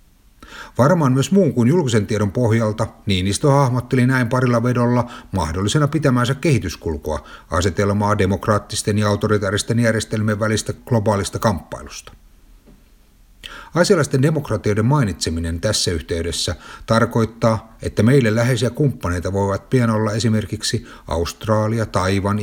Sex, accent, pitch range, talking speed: male, native, 95-115 Hz, 105 wpm